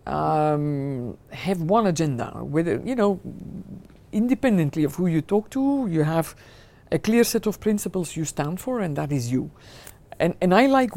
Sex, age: female, 50-69